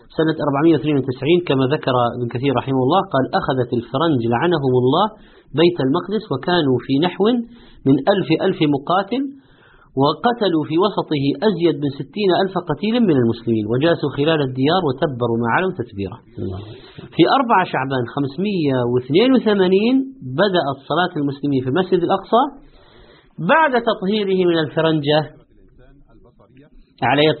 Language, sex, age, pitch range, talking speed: Persian, male, 50-69, 125-165 Hz, 115 wpm